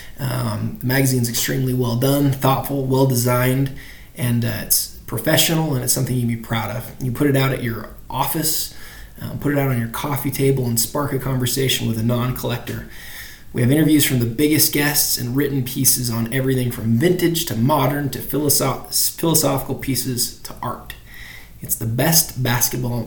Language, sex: English, male